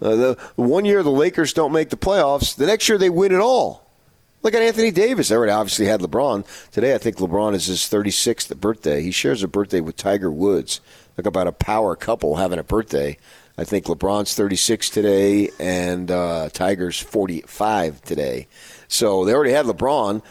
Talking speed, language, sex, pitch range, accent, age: 190 wpm, English, male, 100-140 Hz, American, 40-59